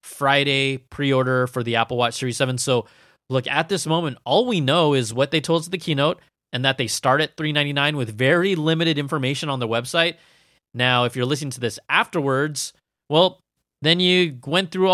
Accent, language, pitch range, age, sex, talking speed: American, English, 135-180 Hz, 20-39, male, 195 wpm